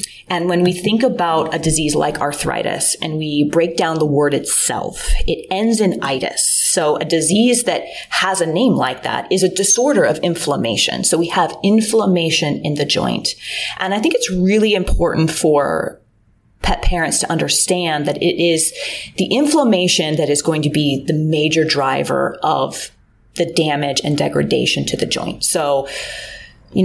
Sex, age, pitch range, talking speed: female, 30-49, 150-180 Hz, 170 wpm